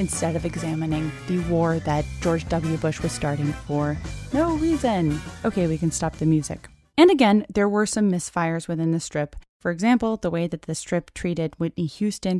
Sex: female